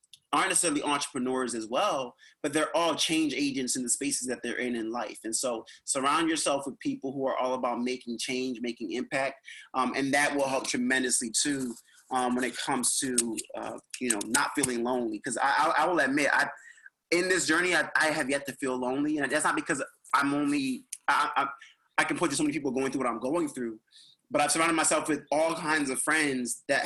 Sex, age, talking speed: male, 30-49, 220 wpm